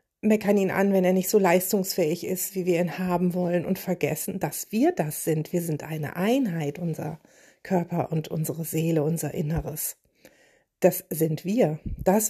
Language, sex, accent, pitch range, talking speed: German, female, German, 165-200 Hz, 170 wpm